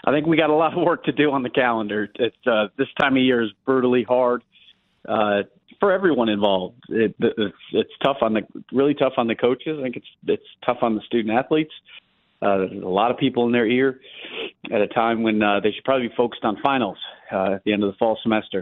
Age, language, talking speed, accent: 40-59, English, 240 wpm, American